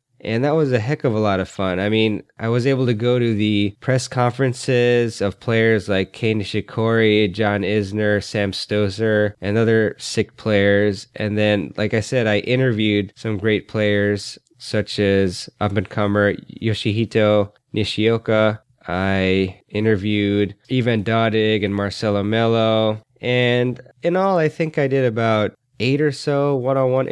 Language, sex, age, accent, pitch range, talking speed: English, male, 20-39, American, 105-125 Hz, 150 wpm